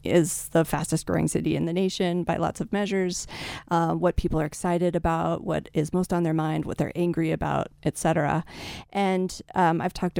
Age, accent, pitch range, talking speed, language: 30-49, American, 160-185 Hz, 200 wpm, English